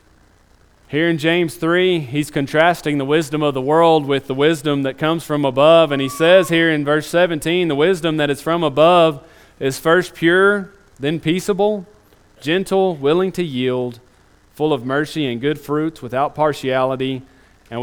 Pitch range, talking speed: 110-150 Hz, 165 wpm